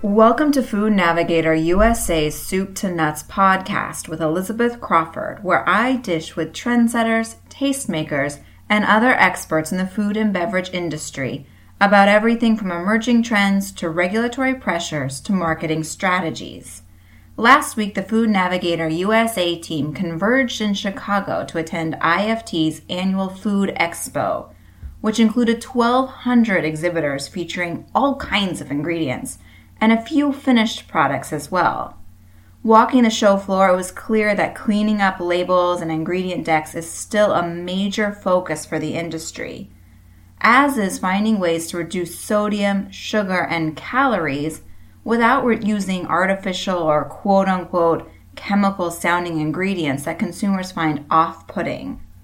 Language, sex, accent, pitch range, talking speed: English, female, American, 165-215 Hz, 130 wpm